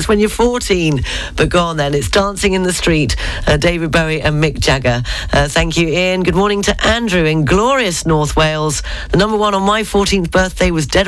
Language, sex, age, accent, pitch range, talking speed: English, female, 40-59, British, 155-205 Hz, 210 wpm